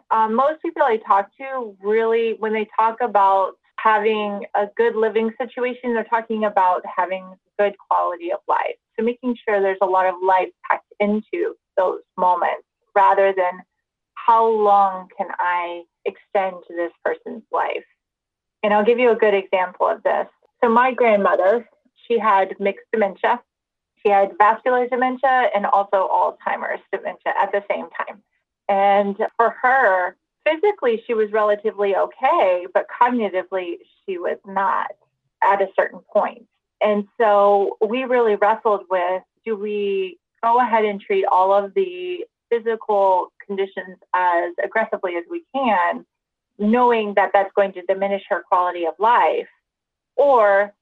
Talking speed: 145 wpm